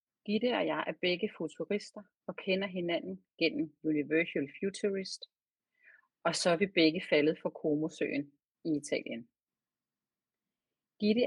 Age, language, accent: 40-59, Danish, native